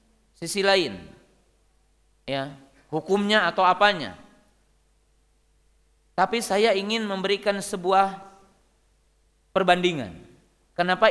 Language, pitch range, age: Indonesian, 170-235 Hz, 40-59